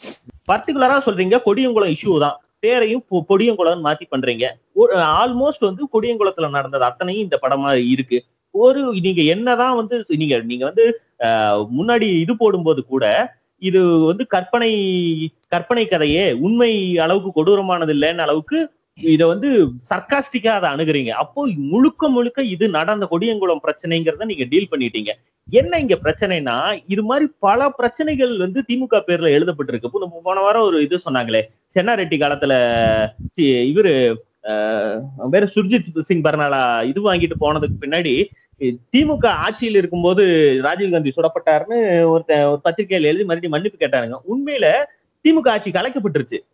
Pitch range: 160-240 Hz